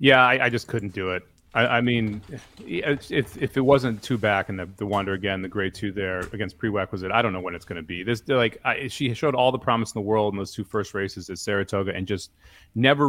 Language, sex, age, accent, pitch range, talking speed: English, male, 30-49, American, 100-130 Hz, 255 wpm